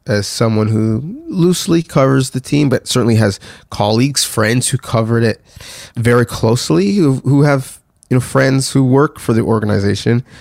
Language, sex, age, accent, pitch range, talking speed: English, male, 30-49, American, 110-140 Hz, 160 wpm